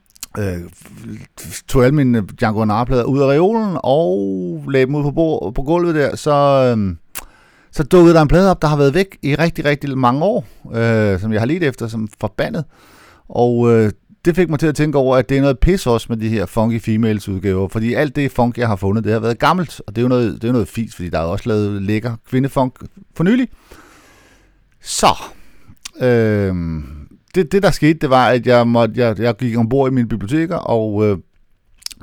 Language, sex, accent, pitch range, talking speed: Danish, male, native, 105-140 Hz, 210 wpm